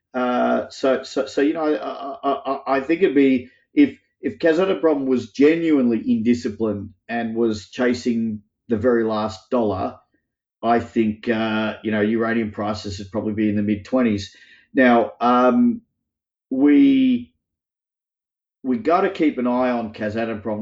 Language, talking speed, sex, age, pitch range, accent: English, 145 wpm, male, 40-59, 105-125 Hz, Australian